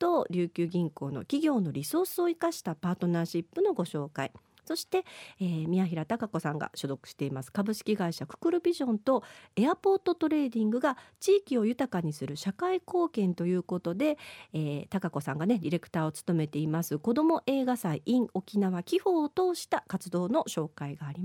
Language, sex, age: Japanese, female, 40-59